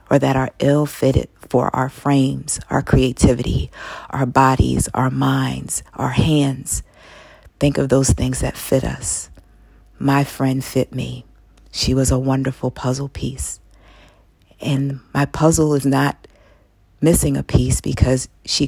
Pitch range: 105-140 Hz